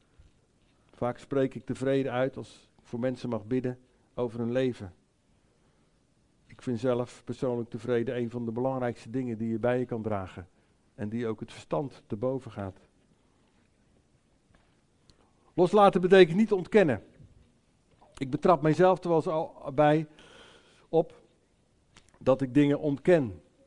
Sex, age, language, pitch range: male, 50-69, English, 115-150 Hz